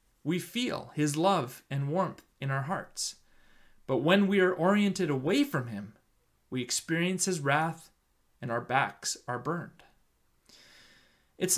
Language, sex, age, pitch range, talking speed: English, male, 30-49, 135-185 Hz, 140 wpm